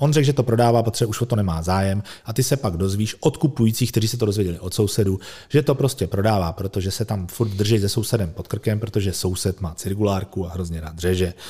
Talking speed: 235 wpm